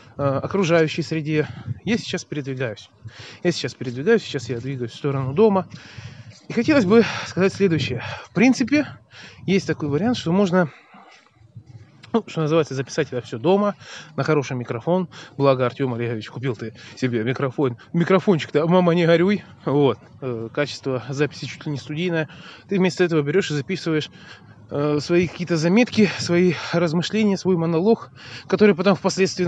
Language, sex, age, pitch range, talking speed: Russian, male, 20-39, 130-185 Hz, 145 wpm